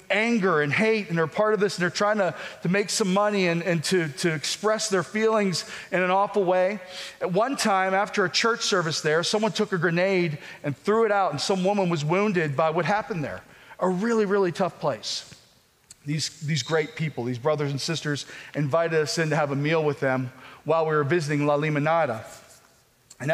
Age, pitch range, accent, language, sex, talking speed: 40-59, 155-210 Hz, American, English, male, 210 wpm